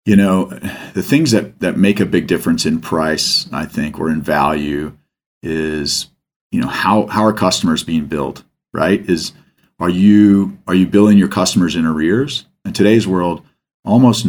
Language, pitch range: English, 80-95 Hz